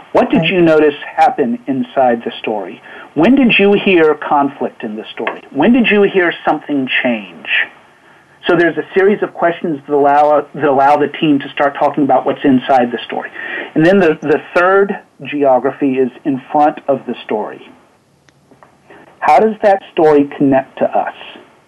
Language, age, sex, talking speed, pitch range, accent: English, 50-69, male, 170 wpm, 140-185 Hz, American